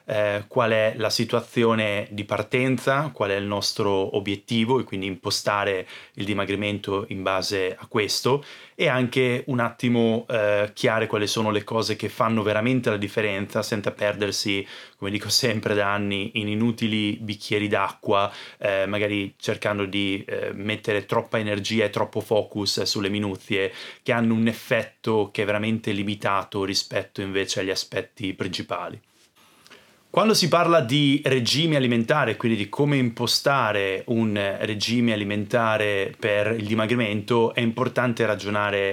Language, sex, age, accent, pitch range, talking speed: Italian, male, 30-49, native, 100-115 Hz, 140 wpm